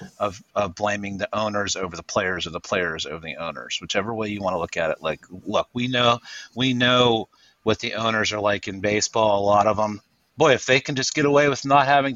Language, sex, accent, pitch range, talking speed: English, male, American, 115-155 Hz, 235 wpm